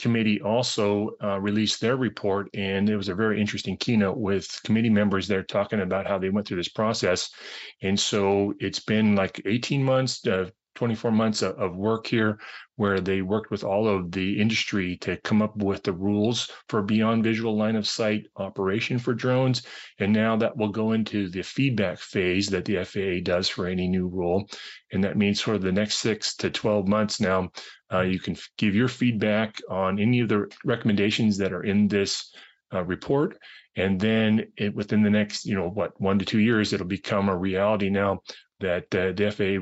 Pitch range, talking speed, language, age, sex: 100-110 Hz, 190 wpm, English, 30-49, male